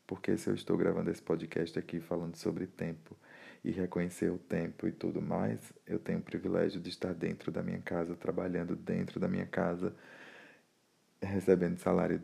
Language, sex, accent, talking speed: Portuguese, male, Brazilian, 170 wpm